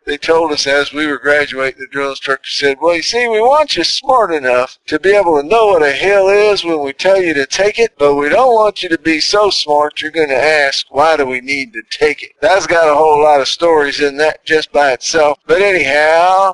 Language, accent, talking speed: English, American, 250 wpm